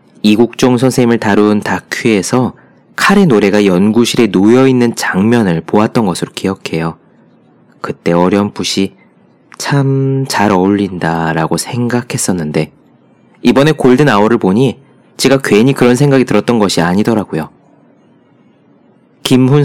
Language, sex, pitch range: Korean, male, 95-125 Hz